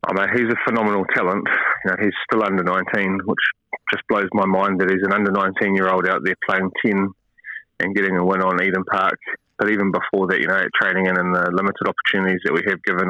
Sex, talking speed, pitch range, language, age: male, 240 wpm, 95-100 Hz, English, 20-39